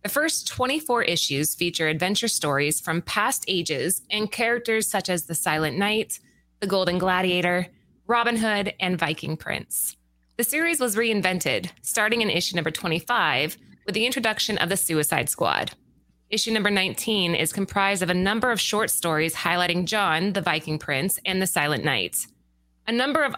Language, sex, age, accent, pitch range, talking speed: English, female, 20-39, American, 170-225 Hz, 165 wpm